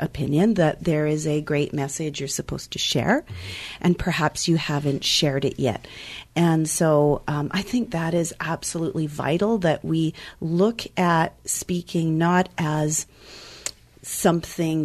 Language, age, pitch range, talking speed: English, 40-59, 145-190 Hz, 140 wpm